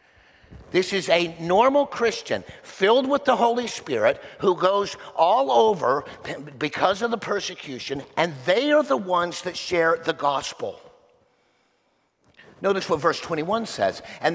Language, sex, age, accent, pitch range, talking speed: English, male, 50-69, American, 170-230 Hz, 140 wpm